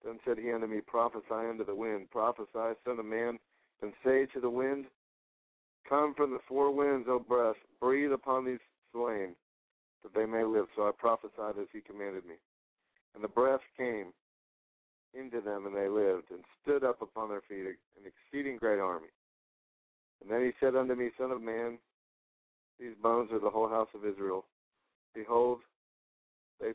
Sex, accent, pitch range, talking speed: male, American, 105-125 Hz, 175 wpm